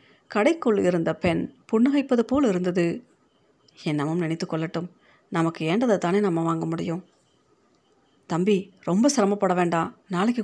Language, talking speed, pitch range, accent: Tamil, 110 wpm, 175-215 Hz, native